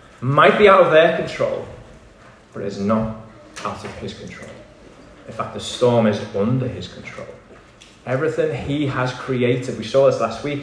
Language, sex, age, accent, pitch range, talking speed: English, male, 20-39, British, 125-165 Hz, 175 wpm